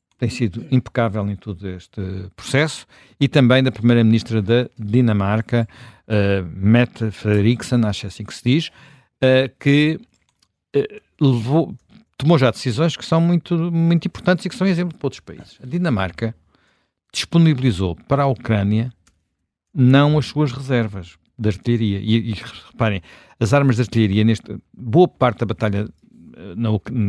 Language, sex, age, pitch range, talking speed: Portuguese, male, 50-69, 105-135 Hz, 135 wpm